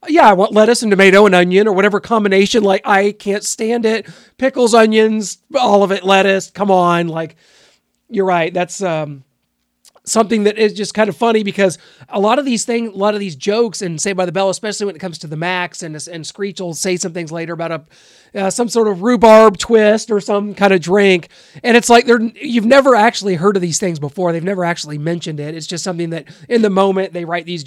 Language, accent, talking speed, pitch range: English, American, 230 wpm, 175-220 Hz